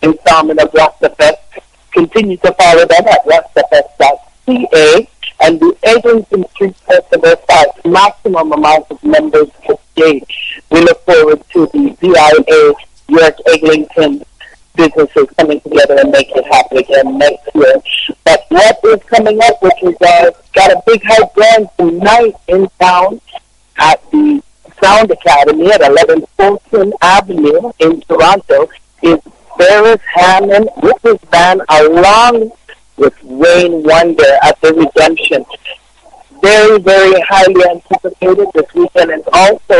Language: English